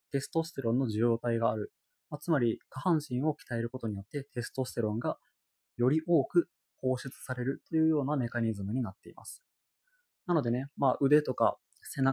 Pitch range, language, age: 115-150 Hz, Japanese, 20-39